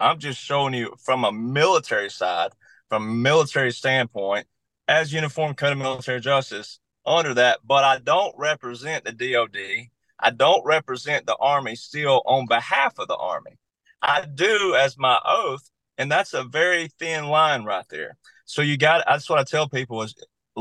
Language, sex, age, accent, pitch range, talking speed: English, male, 30-49, American, 120-145 Hz, 175 wpm